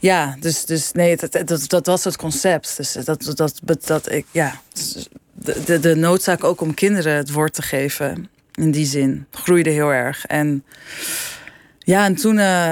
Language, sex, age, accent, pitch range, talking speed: Dutch, female, 20-39, Dutch, 155-180 Hz, 165 wpm